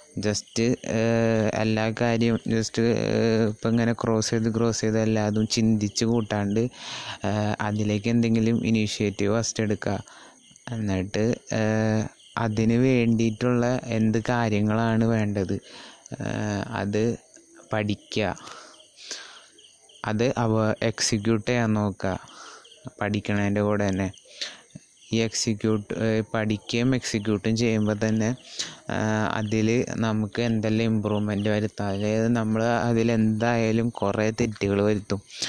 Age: 20-39